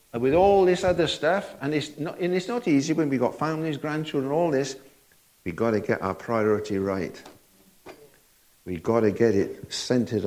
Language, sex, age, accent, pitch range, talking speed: English, male, 60-79, British, 110-140 Hz, 185 wpm